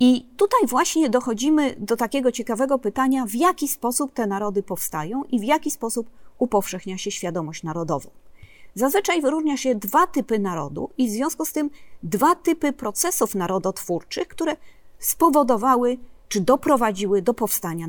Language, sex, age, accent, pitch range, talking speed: Polish, female, 30-49, native, 200-280 Hz, 145 wpm